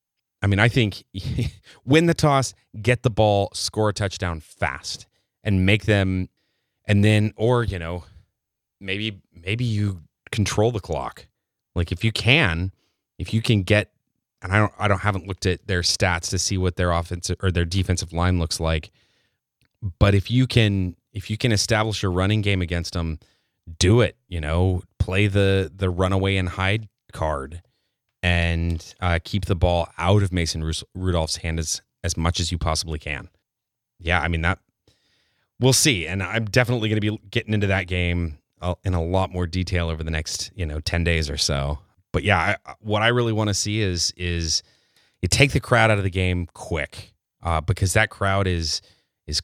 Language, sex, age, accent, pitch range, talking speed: English, male, 30-49, American, 85-110 Hz, 185 wpm